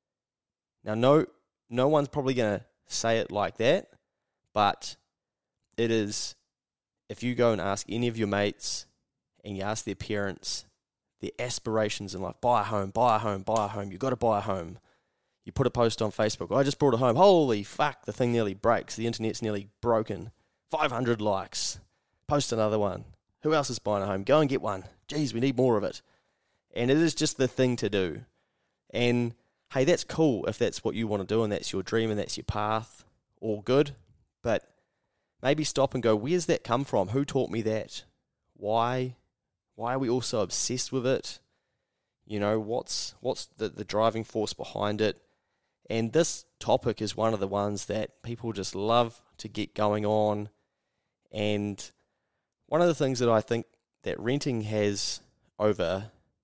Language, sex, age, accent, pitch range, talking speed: English, male, 20-39, Australian, 105-125 Hz, 190 wpm